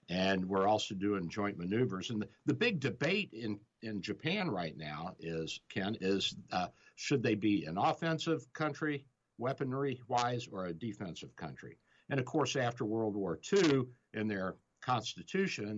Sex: male